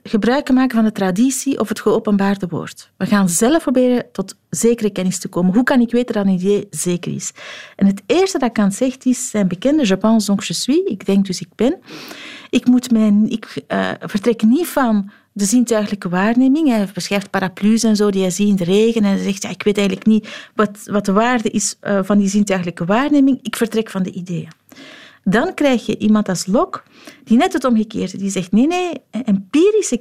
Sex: female